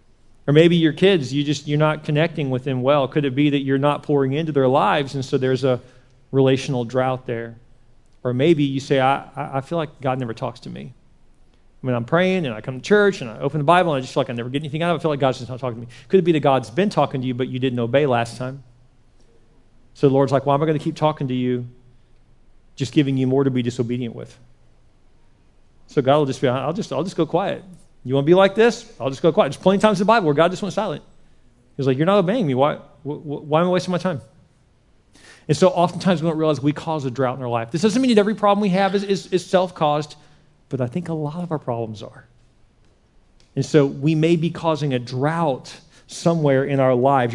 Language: English